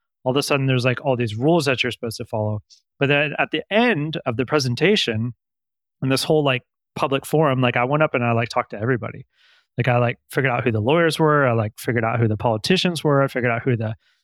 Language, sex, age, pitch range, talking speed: English, male, 30-49, 120-150 Hz, 255 wpm